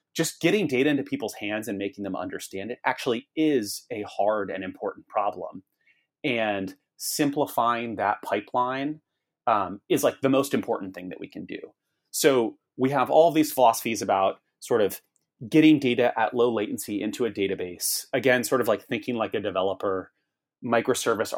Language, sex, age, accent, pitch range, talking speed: English, male, 30-49, American, 100-130 Hz, 165 wpm